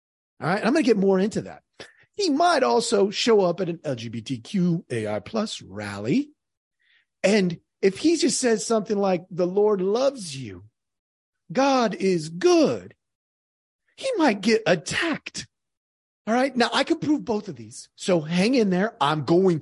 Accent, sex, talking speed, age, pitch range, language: American, male, 160 wpm, 40-59, 150-220 Hz, English